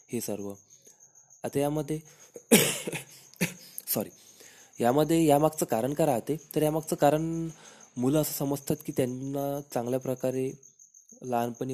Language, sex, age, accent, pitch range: Marathi, male, 20-39, native, 110-135 Hz